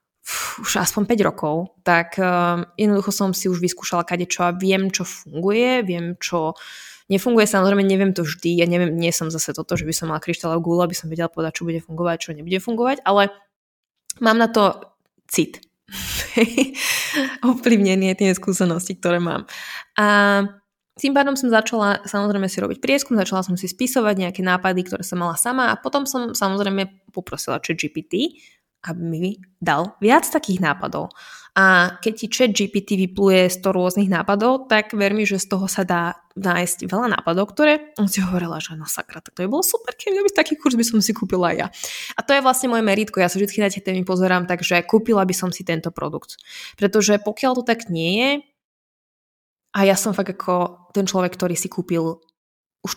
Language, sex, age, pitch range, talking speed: Slovak, female, 20-39, 175-220 Hz, 185 wpm